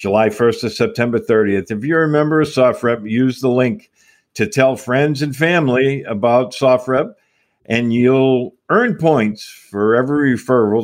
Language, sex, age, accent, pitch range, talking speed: English, male, 50-69, American, 110-140 Hz, 155 wpm